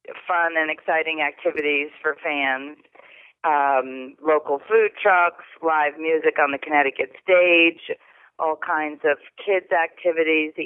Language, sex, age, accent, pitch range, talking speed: English, female, 40-59, American, 145-165 Hz, 125 wpm